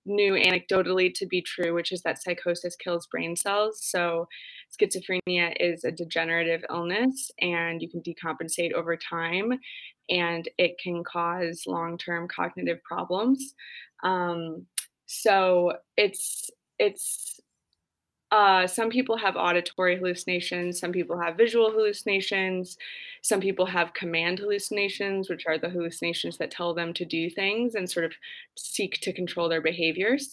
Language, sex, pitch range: English, female, 170-195 Hz